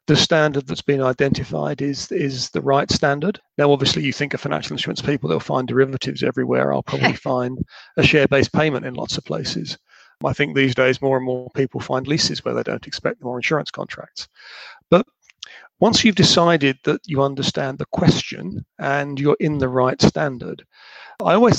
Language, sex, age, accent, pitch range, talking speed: English, male, 40-59, British, 135-165 Hz, 185 wpm